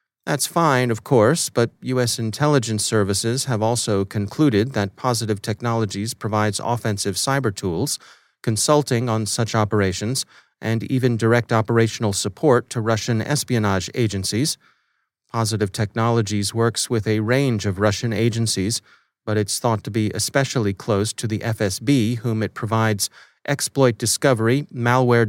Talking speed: 135 wpm